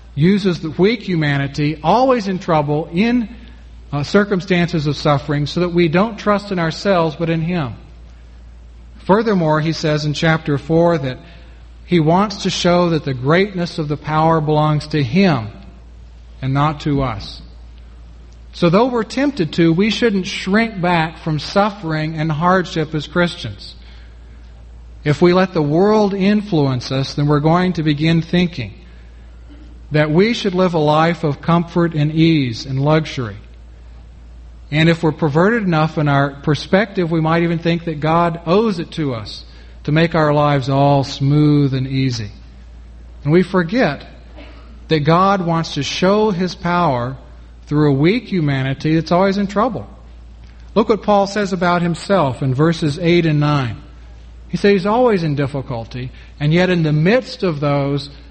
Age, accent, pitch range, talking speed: 40-59, American, 130-175 Hz, 160 wpm